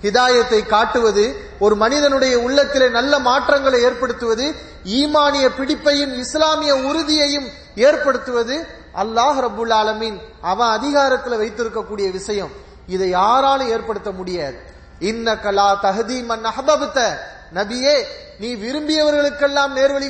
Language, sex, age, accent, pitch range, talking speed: English, male, 30-49, Indian, 205-270 Hz, 70 wpm